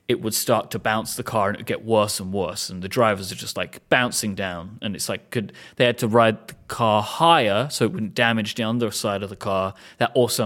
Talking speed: 250 wpm